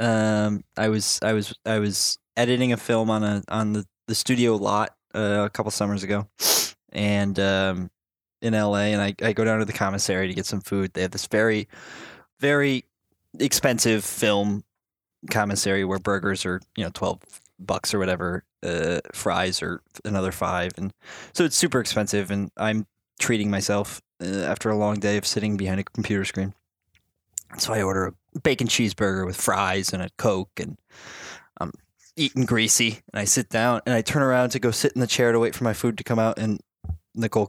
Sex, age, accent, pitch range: male, 20-39, American, 100-110 Hz